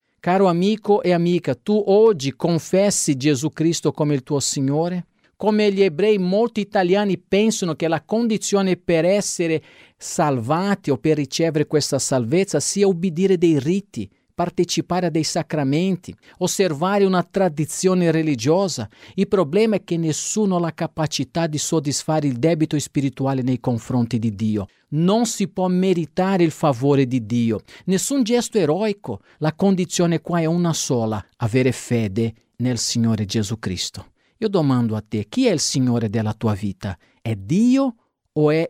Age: 50-69